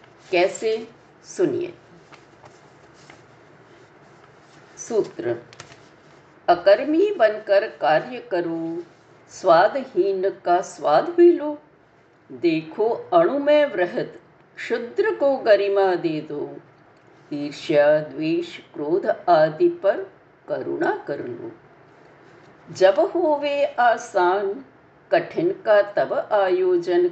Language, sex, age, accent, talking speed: Hindi, female, 50-69, native, 70 wpm